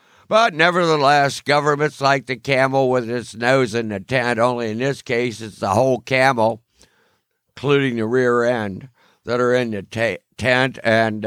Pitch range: 115-145 Hz